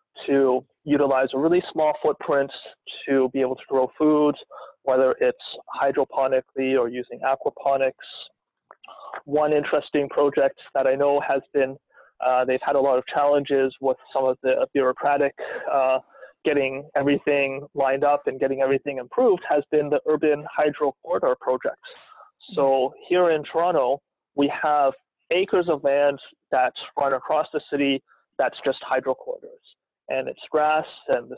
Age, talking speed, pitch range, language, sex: 20-39, 145 wpm, 135-155 Hz, English, male